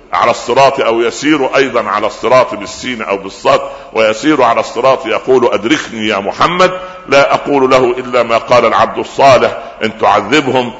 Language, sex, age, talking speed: Arabic, male, 60-79, 150 wpm